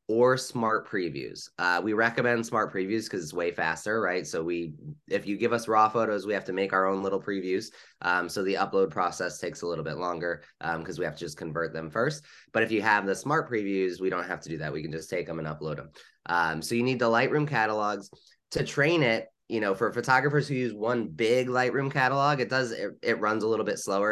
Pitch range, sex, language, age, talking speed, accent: 95-120 Hz, male, English, 20-39, 245 wpm, American